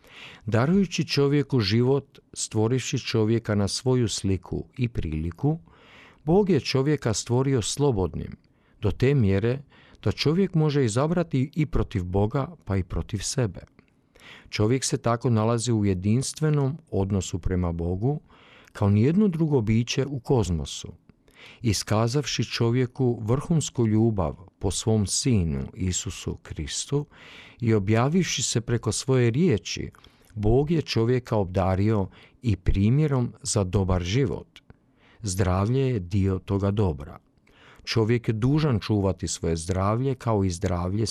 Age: 50-69